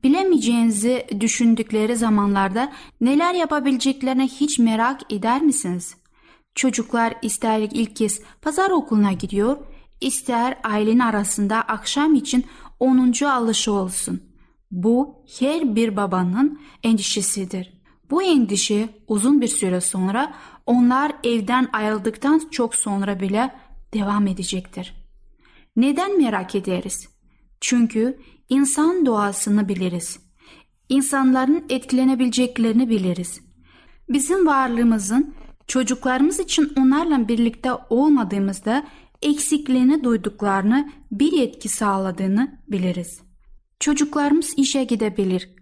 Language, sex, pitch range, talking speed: Turkish, female, 210-270 Hz, 90 wpm